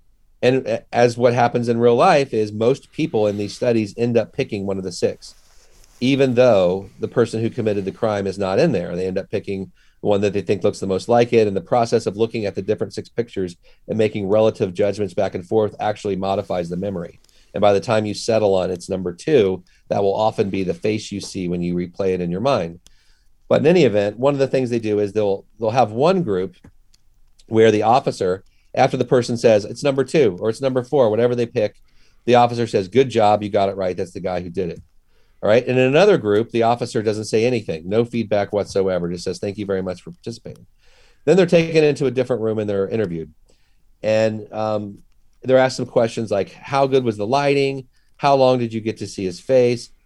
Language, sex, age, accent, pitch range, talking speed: English, male, 40-59, American, 100-120 Hz, 230 wpm